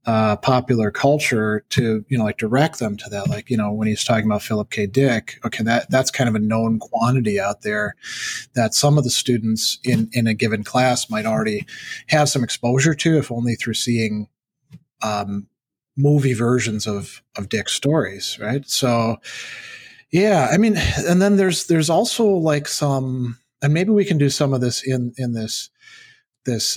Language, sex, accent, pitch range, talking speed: English, male, American, 110-150 Hz, 185 wpm